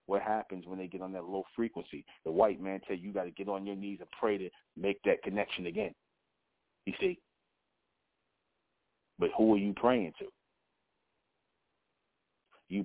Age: 40-59